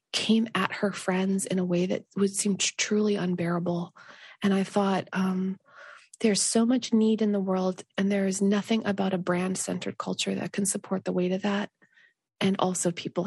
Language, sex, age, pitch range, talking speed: English, female, 20-39, 185-205 Hz, 190 wpm